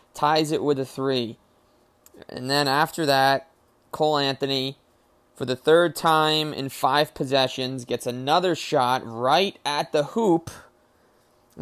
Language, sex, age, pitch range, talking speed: English, male, 20-39, 125-150 Hz, 135 wpm